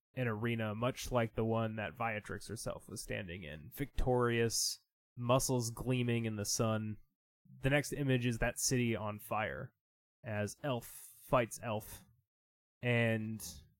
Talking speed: 135 wpm